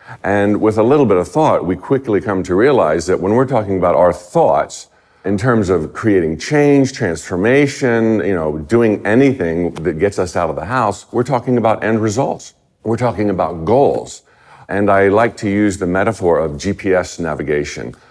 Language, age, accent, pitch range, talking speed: English, 50-69, American, 90-125 Hz, 180 wpm